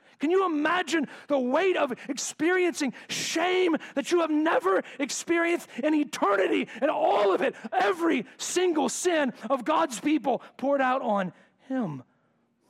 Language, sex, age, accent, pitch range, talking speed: English, male, 40-59, American, 180-235 Hz, 135 wpm